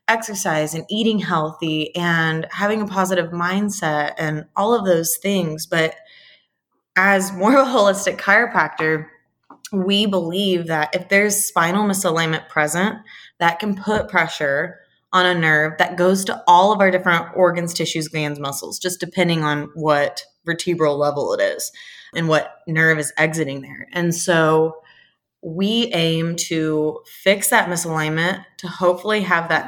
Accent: American